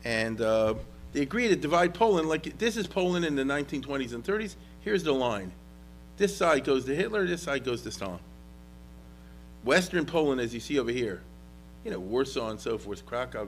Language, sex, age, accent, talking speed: English, male, 40-59, American, 190 wpm